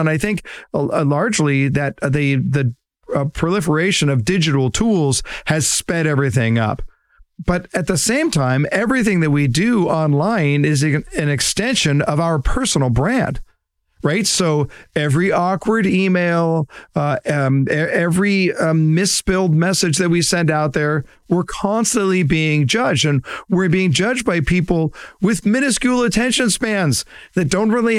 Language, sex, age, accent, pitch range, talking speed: English, male, 40-59, American, 140-195 Hz, 145 wpm